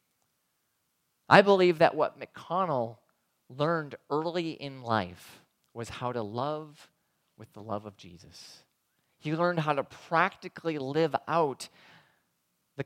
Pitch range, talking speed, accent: 110-150 Hz, 120 wpm, American